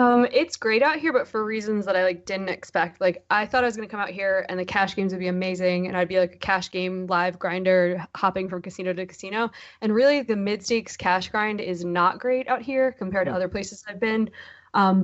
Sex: female